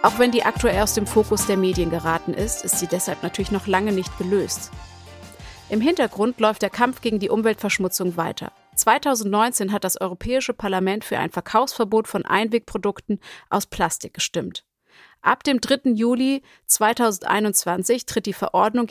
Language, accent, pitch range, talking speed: German, German, 195-240 Hz, 155 wpm